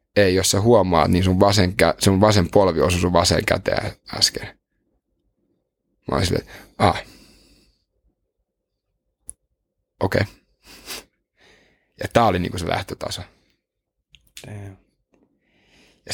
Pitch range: 90-105 Hz